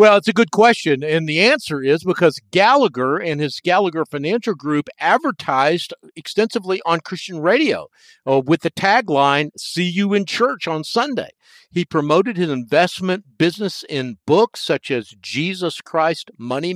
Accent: American